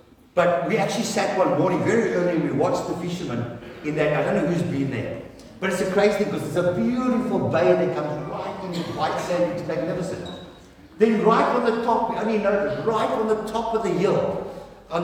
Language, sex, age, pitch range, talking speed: English, male, 60-79, 170-220 Hz, 225 wpm